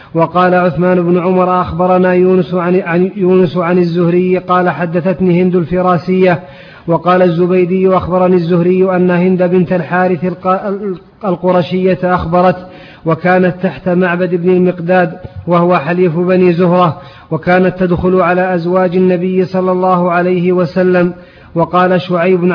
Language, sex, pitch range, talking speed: Arabic, male, 175-185 Hz, 115 wpm